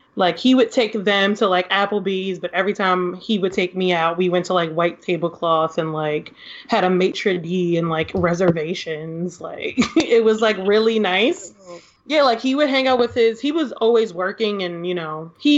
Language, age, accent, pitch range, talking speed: English, 20-39, American, 180-220 Hz, 205 wpm